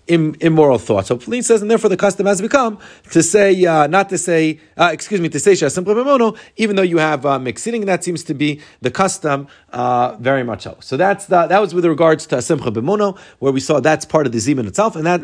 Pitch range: 135-185 Hz